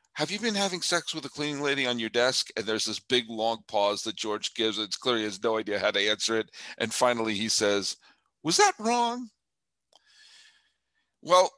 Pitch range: 115-150 Hz